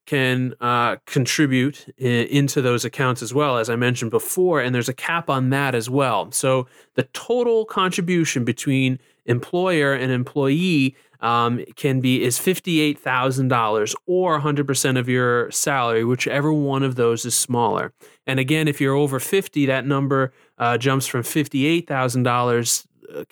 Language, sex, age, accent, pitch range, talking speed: English, male, 20-39, American, 125-150 Hz, 145 wpm